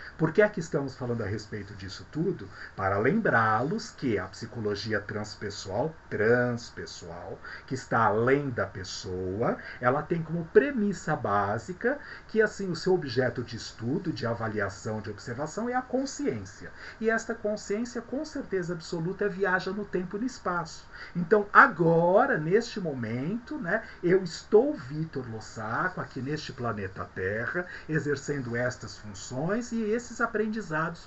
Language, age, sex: Portuguese, 50-69, male